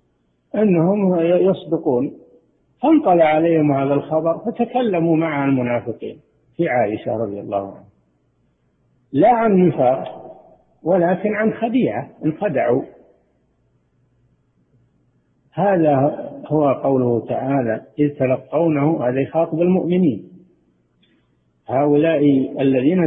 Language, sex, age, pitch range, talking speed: Arabic, male, 50-69, 125-175 Hz, 85 wpm